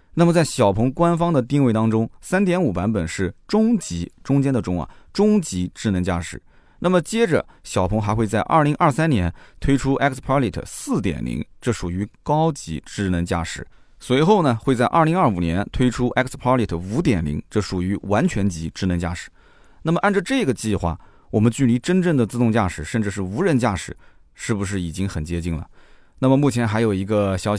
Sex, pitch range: male, 90-130 Hz